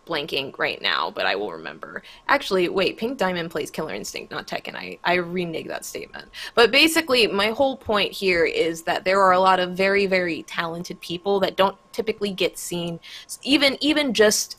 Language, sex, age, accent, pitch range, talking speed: English, female, 20-39, American, 170-200 Hz, 190 wpm